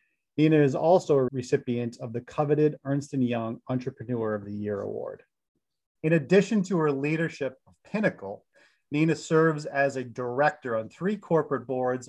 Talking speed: 155 wpm